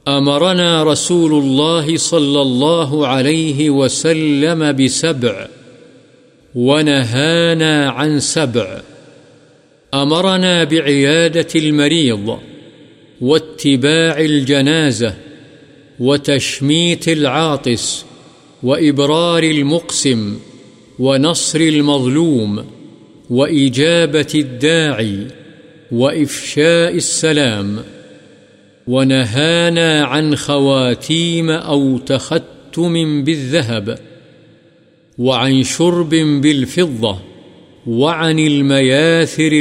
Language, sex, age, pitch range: Urdu, male, 50-69, 130-160 Hz